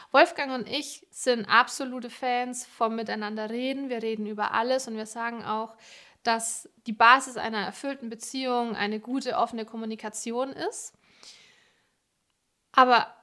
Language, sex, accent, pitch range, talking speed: German, female, German, 220-255 Hz, 125 wpm